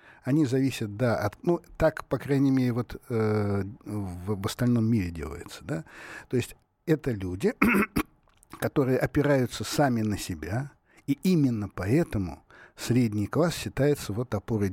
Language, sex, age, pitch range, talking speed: Russian, male, 60-79, 105-140 Hz, 140 wpm